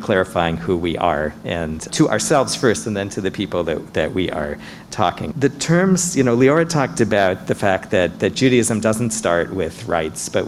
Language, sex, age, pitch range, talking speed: English, male, 50-69, 90-125 Hz, 200 wpm